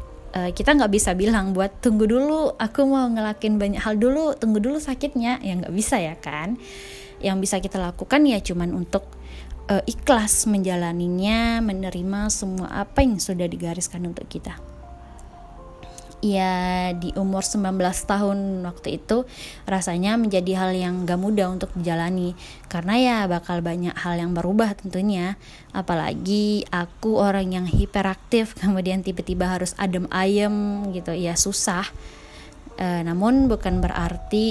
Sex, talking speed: female, 135 wpm